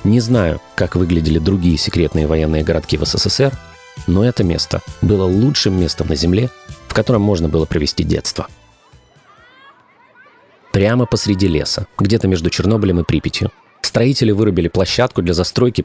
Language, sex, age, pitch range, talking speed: Russian, male, 30-49, 85-120 Hz, 140 wpm